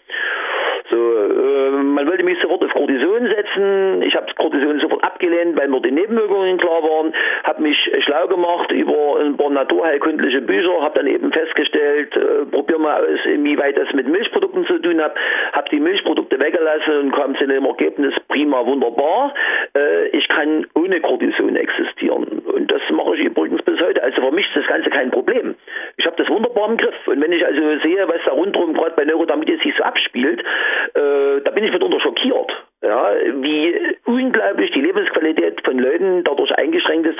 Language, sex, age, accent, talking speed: German, male, 50-69, German, 175 wpm